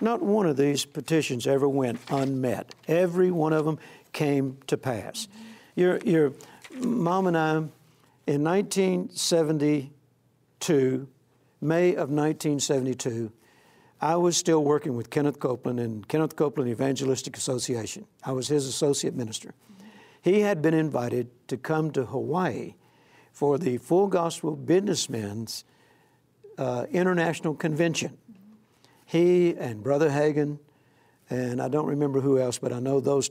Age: 60-79